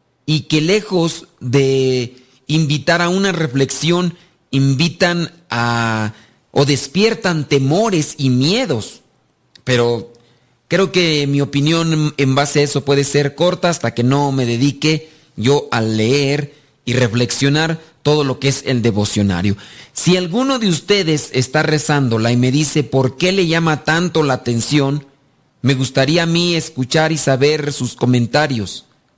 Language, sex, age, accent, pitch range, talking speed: Spanish, male, 40-59, Mexican, 130-165 Hz, 140 wpm